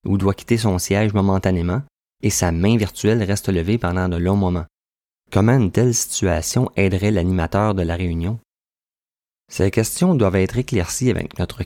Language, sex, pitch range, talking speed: French, male, 90-110 Hz, 165 wpm